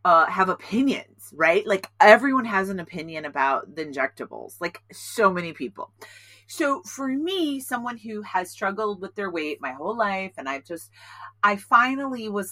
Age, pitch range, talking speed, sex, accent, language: 30-49, 145-220 Hz, 170 wpm, female, American, English